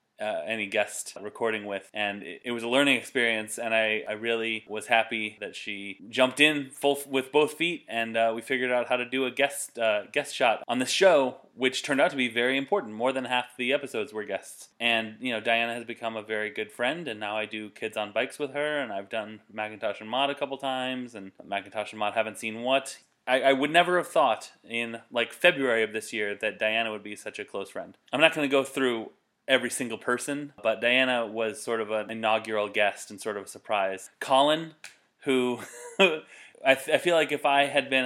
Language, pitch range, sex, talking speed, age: English, 110-140 Hz, male, 230 wpm, 20-39